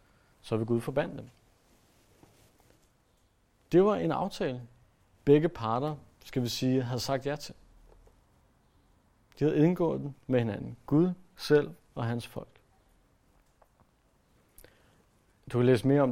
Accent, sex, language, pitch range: native, male, Danish, 110-145 Hz